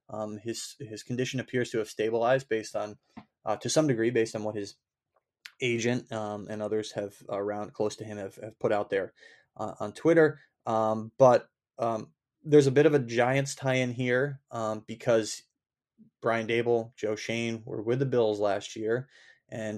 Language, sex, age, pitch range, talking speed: English, male, 20-39, 110-130 Hz, 180 wpm